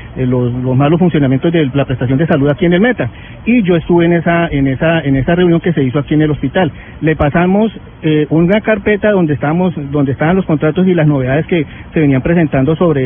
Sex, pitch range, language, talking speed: male, 155-195 Hz, Spanish, 225 wpm